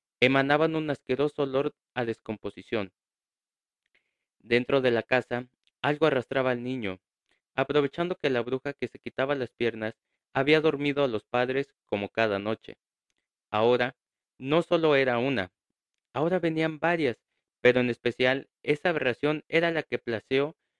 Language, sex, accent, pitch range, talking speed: Spanish, male, Mexican, 115-145 Hz, 140 wpm